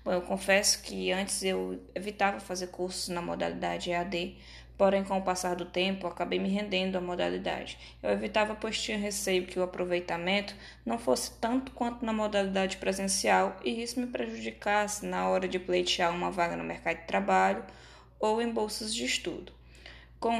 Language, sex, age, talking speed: Portuguese, female, 10-29, 170 wpm